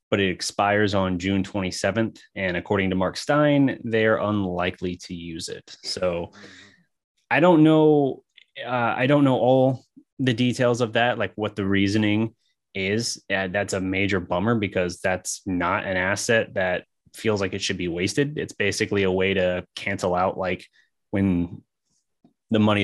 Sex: male